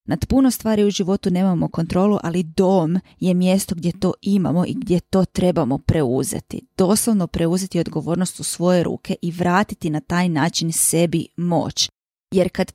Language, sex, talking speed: Croatian, female, 160 wpm